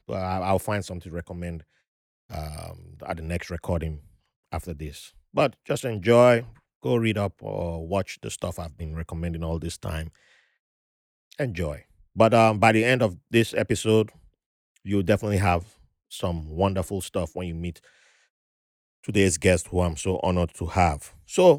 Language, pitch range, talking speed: English, 85-110 Hz, 155 wpm